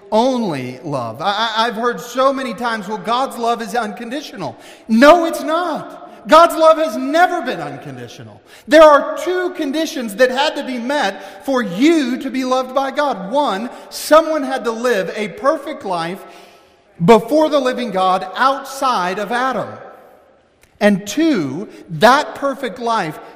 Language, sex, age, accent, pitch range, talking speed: English, male, 40-59, American, 185-250 Hz, 145 wpm